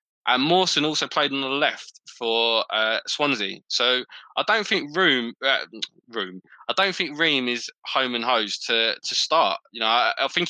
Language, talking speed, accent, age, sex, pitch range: English, 195 wpm, British, 20-39, male, 115-145 Hz